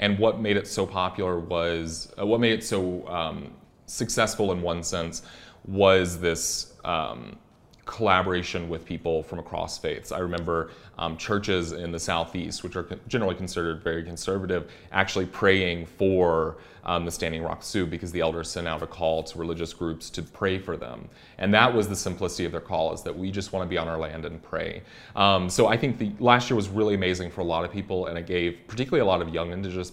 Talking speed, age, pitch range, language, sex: 210 wpm, 30-49, 85-95 Hz, English, male